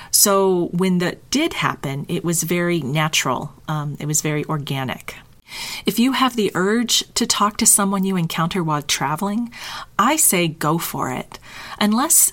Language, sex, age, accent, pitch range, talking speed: English, female, 40-59, American, 155-190 Hz, 160 wpm